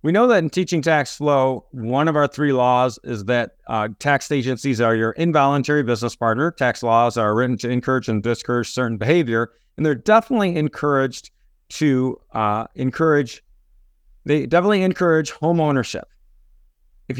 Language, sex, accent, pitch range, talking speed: English, male, American, 120-155 Hz, 155 wpm